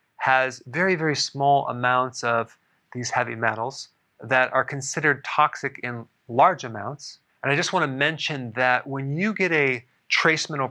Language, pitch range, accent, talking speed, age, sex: English, 120-145 Hz, American, 165 wpm, 40-59, male